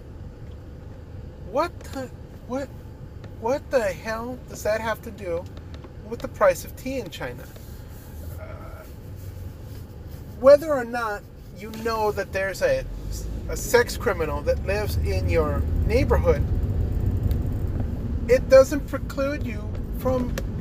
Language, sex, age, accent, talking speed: English, male, 30-49, American, 115 wpm